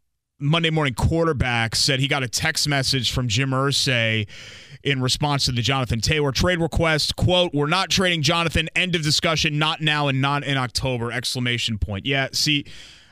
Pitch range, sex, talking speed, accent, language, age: 115-150 Hz, male, 175 wpm, American, English, 30-49